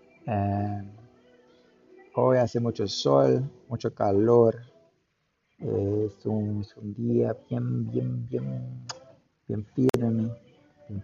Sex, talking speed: male, 90 wpm